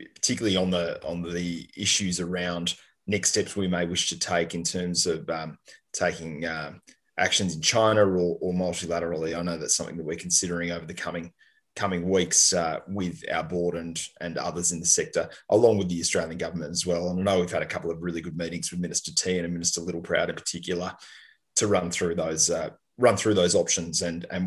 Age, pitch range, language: 20-39, 85-100 Hz, English